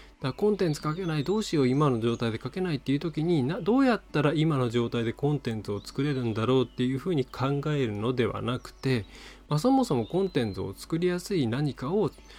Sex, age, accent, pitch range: male, 20-39, native, 110-160 Hz